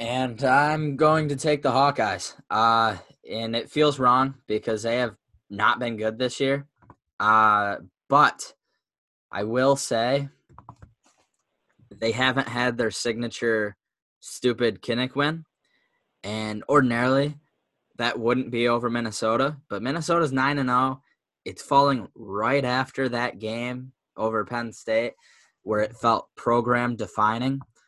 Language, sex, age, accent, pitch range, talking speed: English, male, 10-29, American, 105-125 Hz, 125 wpm